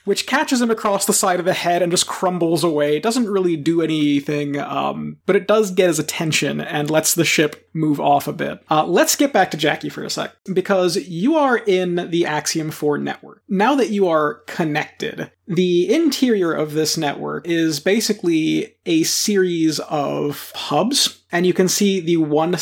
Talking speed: 190 wpm